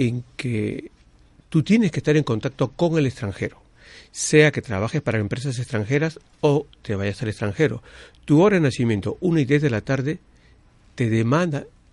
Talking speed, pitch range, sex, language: 170 wpm, 110-145 Hz, male, Spanish